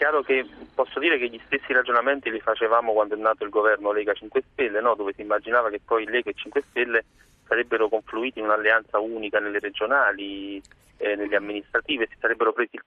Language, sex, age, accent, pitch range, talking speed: Italian, male, 30-49, native, 105-125 Hz, 205 wpm